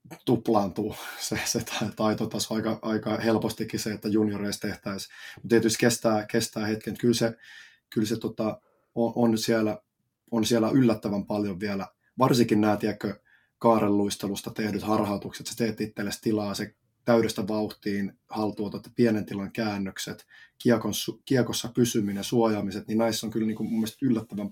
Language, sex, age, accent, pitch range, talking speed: Finnish, male, 20-39, native, 105-115 Hz, 135 wpm